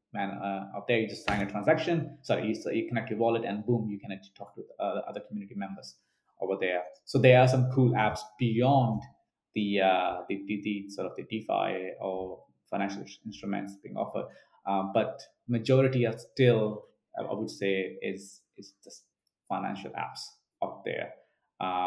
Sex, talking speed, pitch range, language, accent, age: male, 180 wpm, 100-125 Hz, English, Indian, 20-39